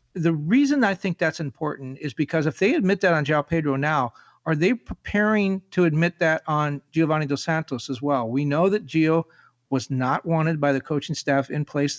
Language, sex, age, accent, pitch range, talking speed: English, male, 40-59, American, 145-175 Hz, 205 wpm